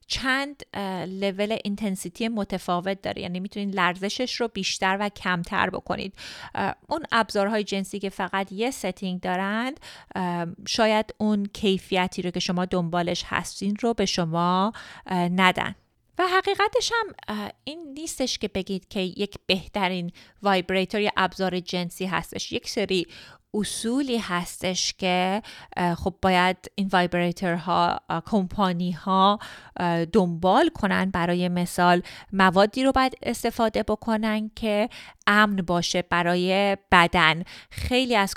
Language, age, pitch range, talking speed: Persian, 30-49, 180-215 Hz, 125 wpm